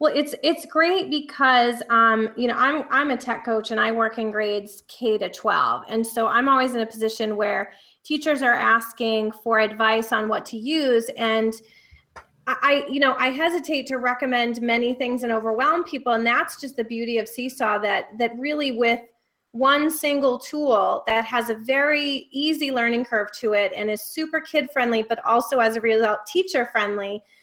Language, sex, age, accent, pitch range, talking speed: English, female, 30-49, American, 225-270 Hz, 190 wpm